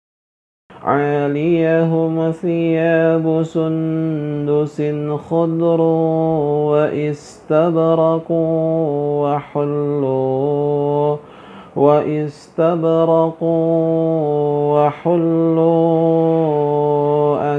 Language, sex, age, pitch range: Indonesian, male, 50-69, 145-165 Hz